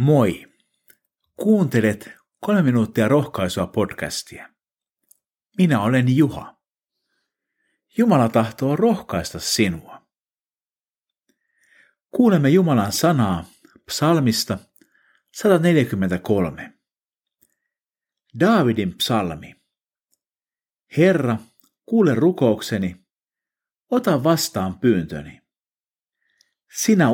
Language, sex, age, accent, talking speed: Finnish, male, 50-69, native, 60 wpm